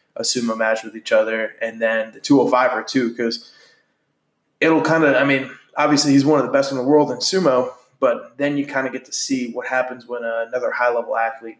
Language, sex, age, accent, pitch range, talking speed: English, male, 20-39, American, 115-140 Hz, 245 wpm